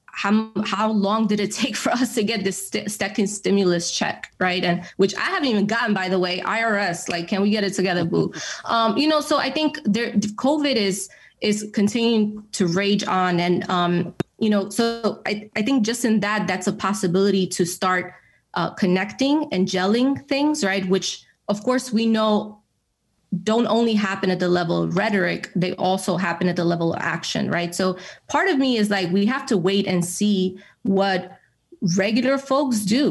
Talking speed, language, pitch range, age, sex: 195 wpm, English, 185-215 Hz, 20-39, female